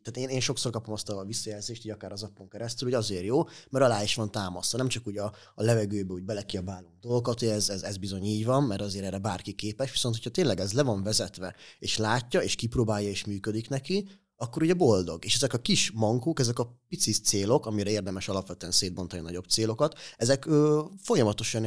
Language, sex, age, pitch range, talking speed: Hungarian, male, 30-49, 95-115 Hz, 215 wpm